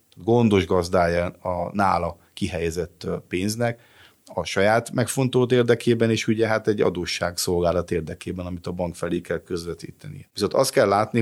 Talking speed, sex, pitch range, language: 140 wpm, male, 90-110 Hz, Hungarian